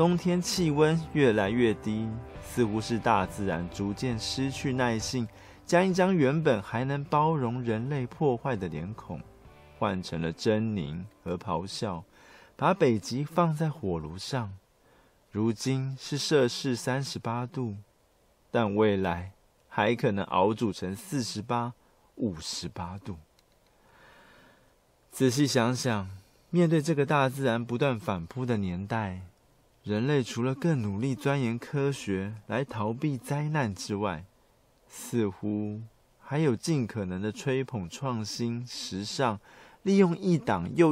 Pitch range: 100-135 Hz